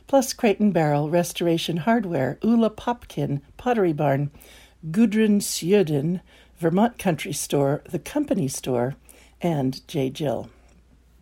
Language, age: English, 60-79